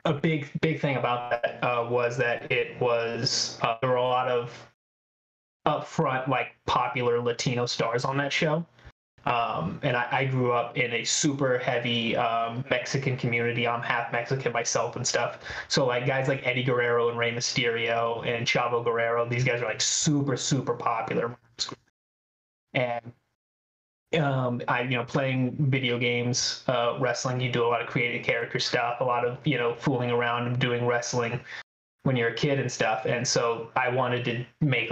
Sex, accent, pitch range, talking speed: male, American, 120-135 Hz, 175 wpm